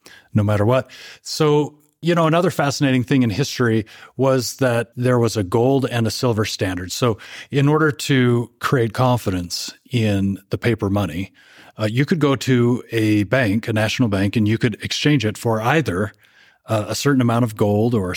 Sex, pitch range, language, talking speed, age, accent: male, 110-135 Hz, English, 185 wpm, 30-49, American